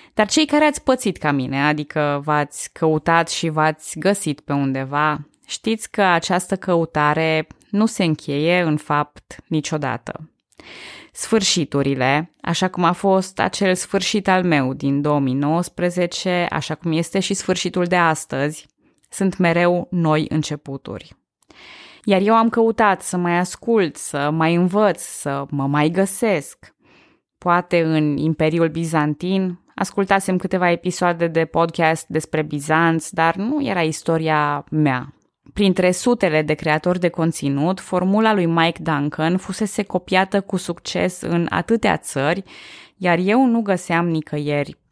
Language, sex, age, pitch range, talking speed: Romanian, female, 20-39, 150-190 Hz, 130 wpm